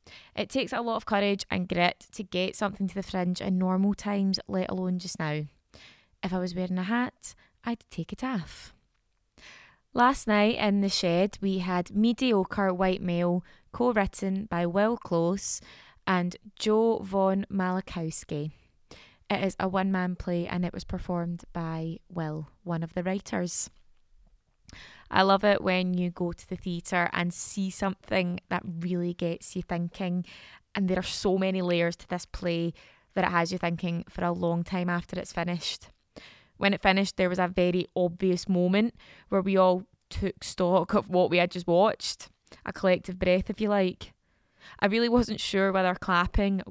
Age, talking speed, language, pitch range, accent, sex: 20-39, 170 wpm, English, 175-195 Hz, British, female